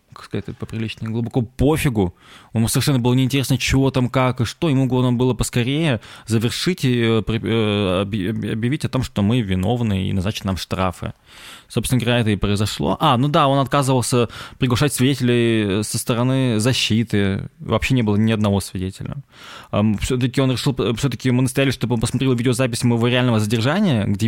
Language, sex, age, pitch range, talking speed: Russian, male, 20-39, 105-130 Hz, 150 wpm